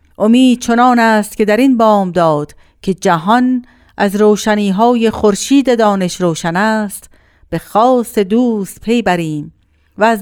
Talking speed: 135 wpm